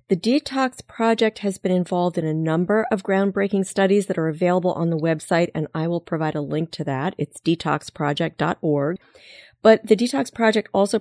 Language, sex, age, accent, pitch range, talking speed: English, female, 40-59, American, 150-195 Hz, 180 wpm